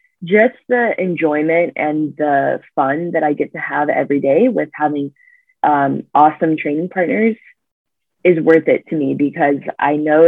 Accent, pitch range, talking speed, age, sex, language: American, 150-175 Hz, 160 wpm, 20-39, female, English